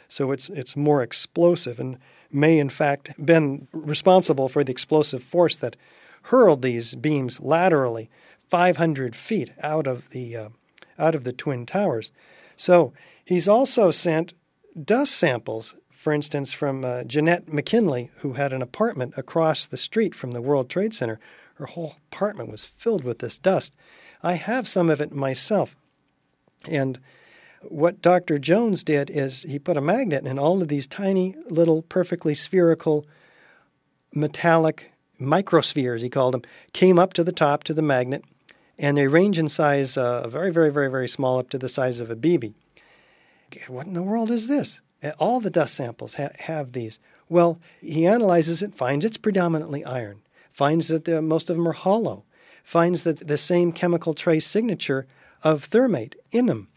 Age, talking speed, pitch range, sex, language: 50-69, 170 wpm, 135-175 Hz, male, English